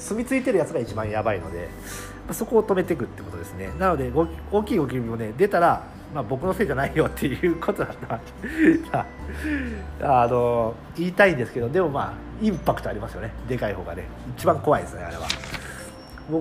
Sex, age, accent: male, 40-59, native